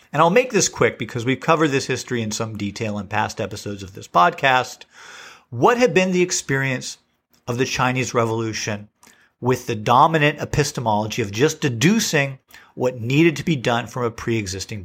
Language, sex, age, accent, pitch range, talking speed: English, male, 50-69, American, 120-155 Hz, 175 wpm